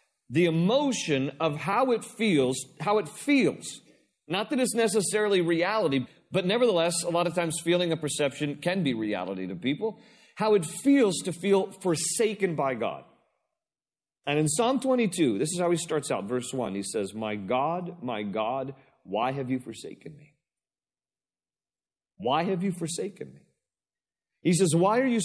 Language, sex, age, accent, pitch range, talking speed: English, male, 40-59, American, 150-215 Hz, 165 wpm